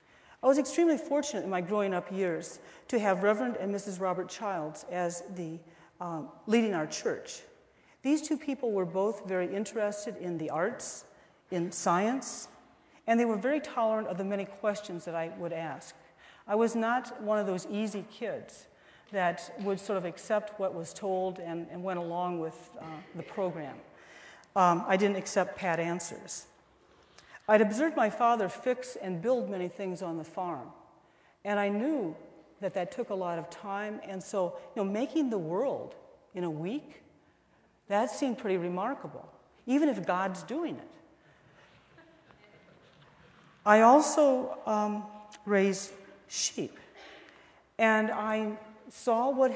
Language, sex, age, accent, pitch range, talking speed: English, female, 40-59, American, 180-245 Hz, 155 wpm